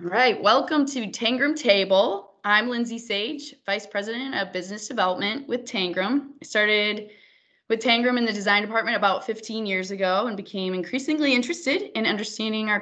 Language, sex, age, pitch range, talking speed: English, female, 20-39, 175-245 Hz, 165 wpm